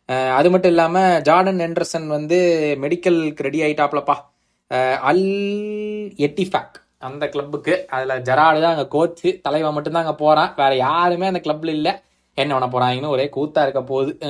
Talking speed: 140 wpm